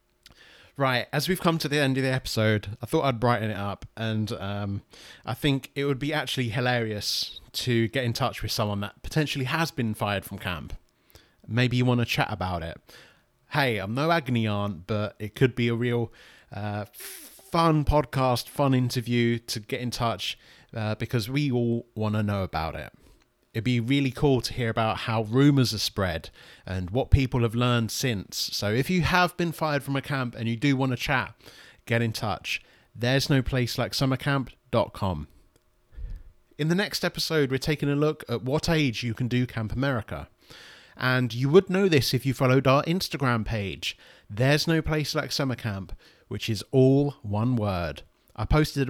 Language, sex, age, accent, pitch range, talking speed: English, male, 30-49, British, 110-140 Hz, 190 wpm